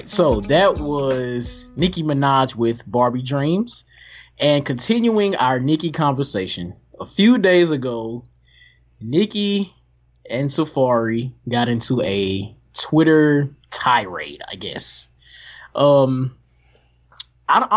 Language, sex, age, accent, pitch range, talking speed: English, male, 20-39, American, 105-155 Hz, 100 wpm